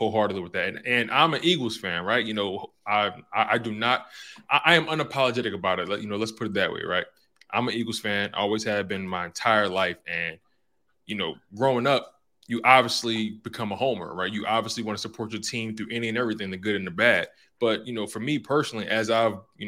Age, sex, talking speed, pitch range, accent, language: 20-39, male, 235 wpm, 105-125 Hz, American, English